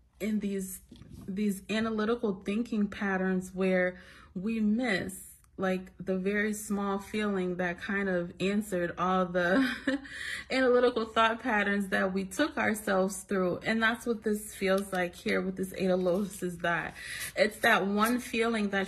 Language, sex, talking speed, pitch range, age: English, female, 145 wpm, 185-215 Hz, 30-49